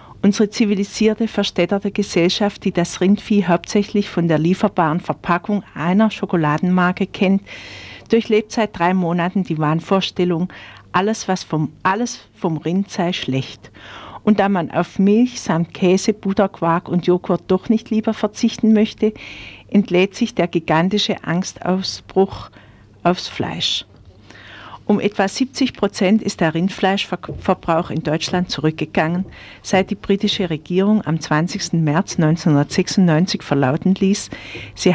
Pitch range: 155-200 Hz